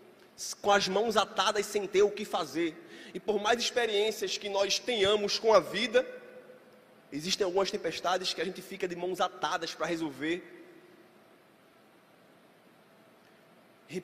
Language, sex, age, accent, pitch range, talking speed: Portuguese, male, 20-39, Brazilian, 180-220 Hz, 135 wpm